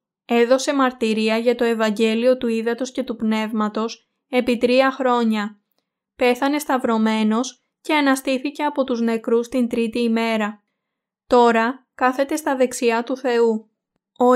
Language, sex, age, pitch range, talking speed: Greek, female, 20-39, 225-255 Hz, 125 wpm